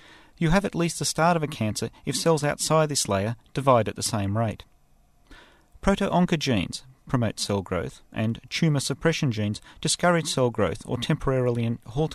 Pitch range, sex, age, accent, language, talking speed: 115-160 Hz, male, 40-59, Australian, English, 165 wpm